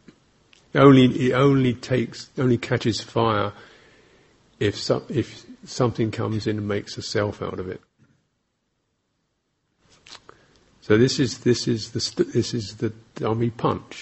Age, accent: 50-69, British